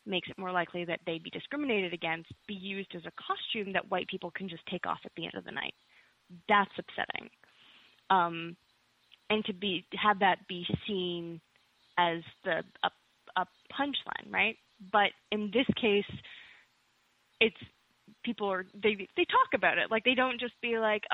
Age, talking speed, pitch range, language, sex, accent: 20-39, 175 wpm, 175-225 Hz, English, female, American